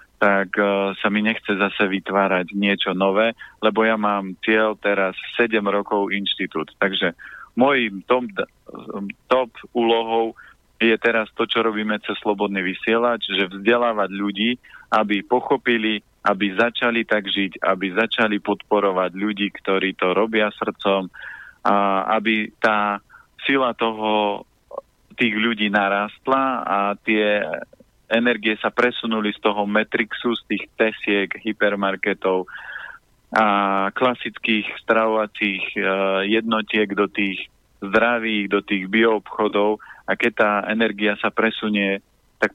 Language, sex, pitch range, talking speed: Slovak, male, 100-115 Hz, 115 wpm